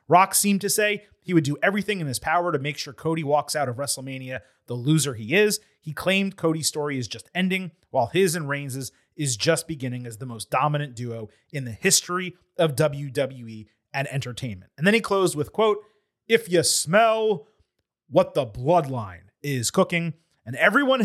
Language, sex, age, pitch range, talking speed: English, male, 30-49, 140-195 Hz, 185 wpm